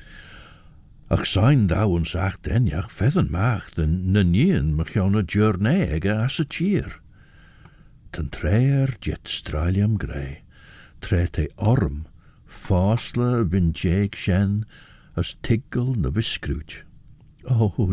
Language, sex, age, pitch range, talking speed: English, male, 60-79, 85-120 Hz, 95 wpm